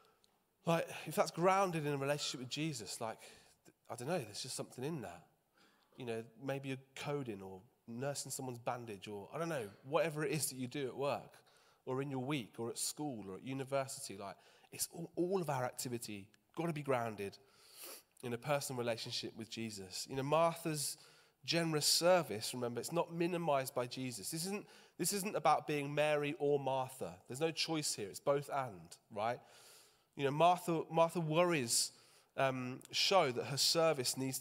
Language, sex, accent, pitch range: English, male, British, 120-150 Hz